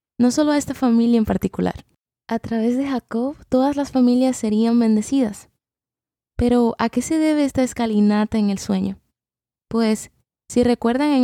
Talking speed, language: 160 wpm, Spanish